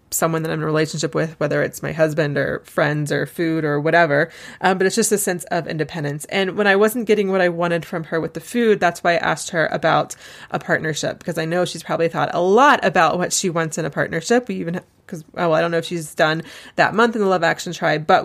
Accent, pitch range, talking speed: American, 165-190 Hz, 260 wpm